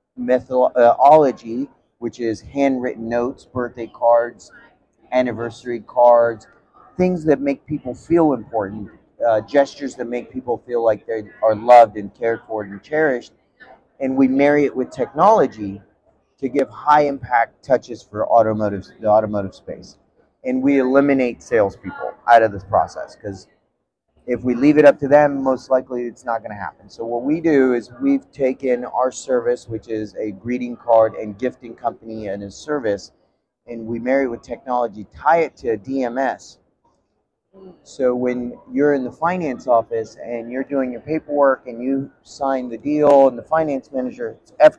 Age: 30-49